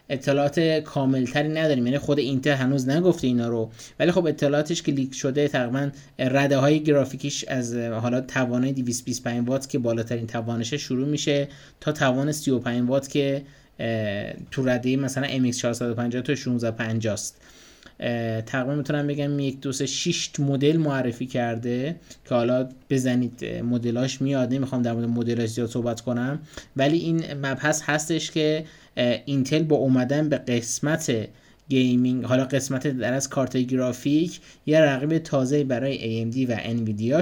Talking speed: 135 wpm